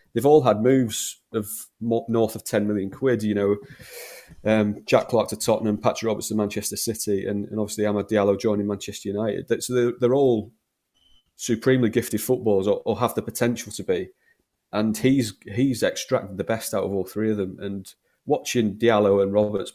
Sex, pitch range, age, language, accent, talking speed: male, 100-120 Hz, 30-49, English, British, 190 wpm